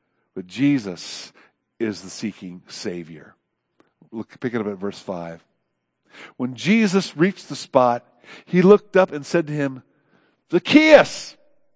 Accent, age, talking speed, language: American, 50-69, 130 wpm, English